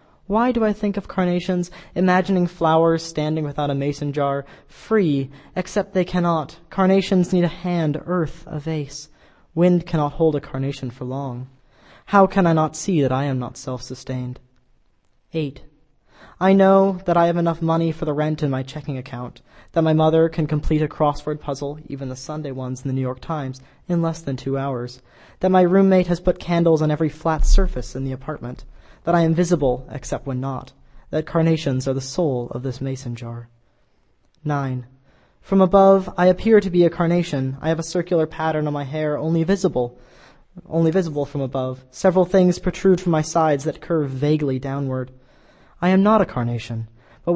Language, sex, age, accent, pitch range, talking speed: English, male, 20-39, American, 130-175 Hz, 185 wpm